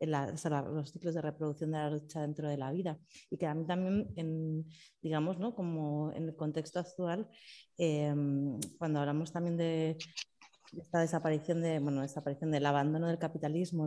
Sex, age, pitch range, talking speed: female, 30-49, 150-170 Hz, 175 wpm